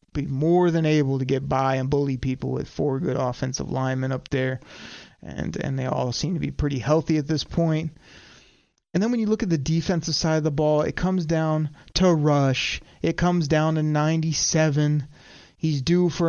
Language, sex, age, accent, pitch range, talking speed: English, male, 30-49, American, 140-160 Hz, 205 wpm